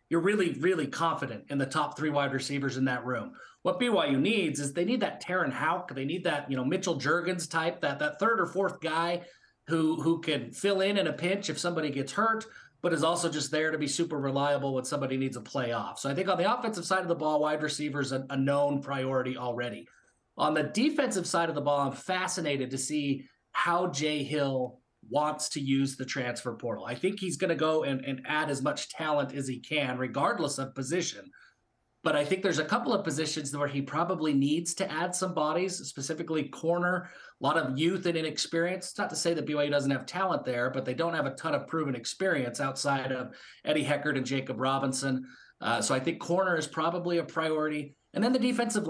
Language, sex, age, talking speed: English, male, 30-49, 220 wpm